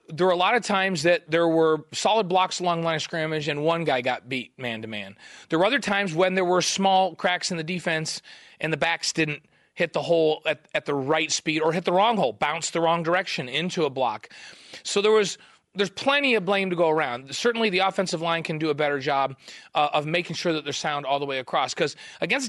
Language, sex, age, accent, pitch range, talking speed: English, male, 30-49, American, 145-190 Hz, 240 wpm